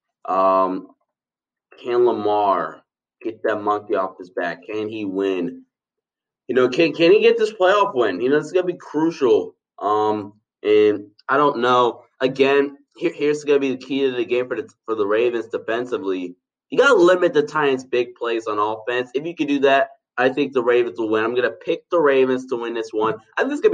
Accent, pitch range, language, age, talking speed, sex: American, 115-170 Hz, English, 20-39, 205 wpm, male